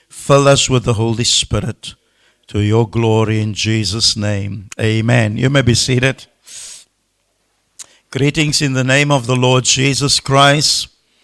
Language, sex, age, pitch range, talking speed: English, male, 60-79, 110-125 Hz, 140 wpm